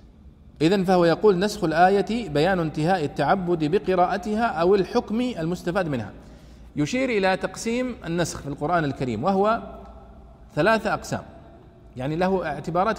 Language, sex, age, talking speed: Arabic, male, 40-59, 120 wpm